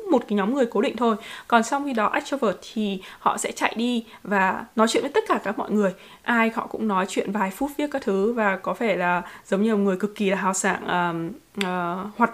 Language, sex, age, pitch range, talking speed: Vietnamese, female, 20-39, 195-245 Hz, 245 wpm